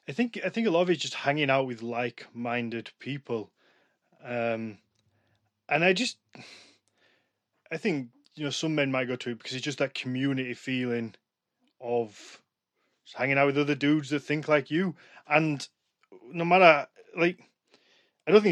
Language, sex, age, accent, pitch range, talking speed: English, male, 20-39, British, 125-150 Hz, 175 wpm